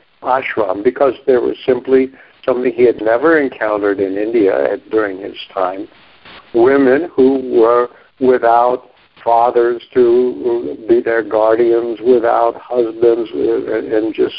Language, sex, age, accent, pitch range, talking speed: English, male, 60-79, American, 115-195 Hz, 115 wpm